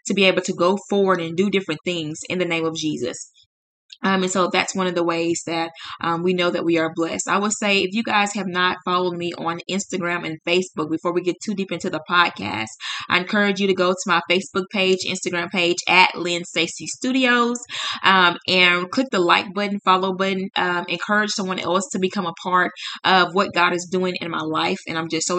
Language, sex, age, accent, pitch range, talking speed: English, female, 20-39, American, 170-195 Hz, 225 wpm